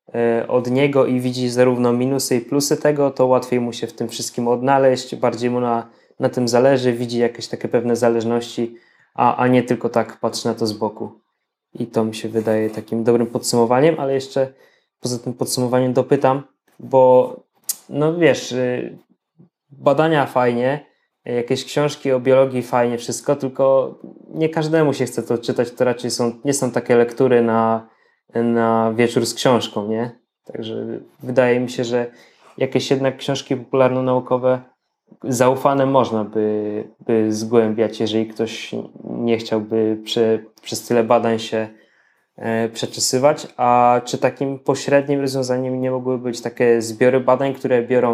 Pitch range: 115-130 Hz